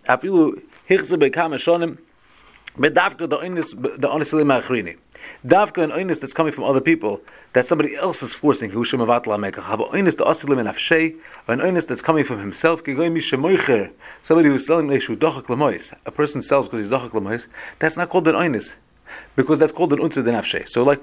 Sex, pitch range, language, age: male, 125-165 Hz, English, 40-59